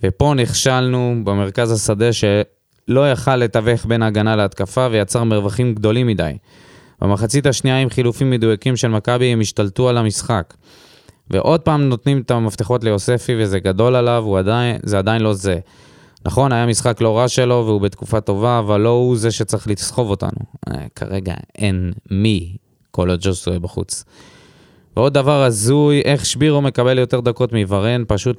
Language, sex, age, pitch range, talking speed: Hebrew, male, 20-39, 105-125 Hz, 150 wpm